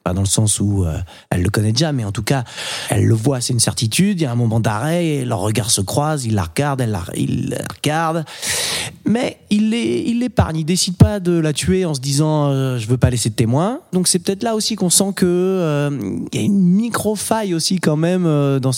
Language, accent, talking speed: French, French, 250 wpm